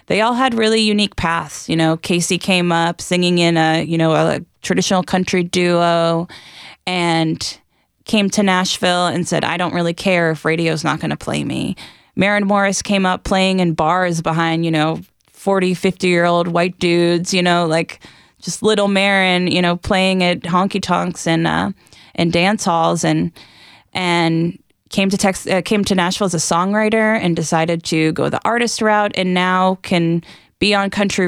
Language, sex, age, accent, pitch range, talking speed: English, female, 10-29, American, 170-200 Hz, 180 wpm